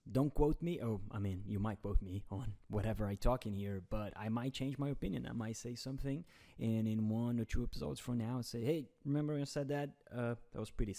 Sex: male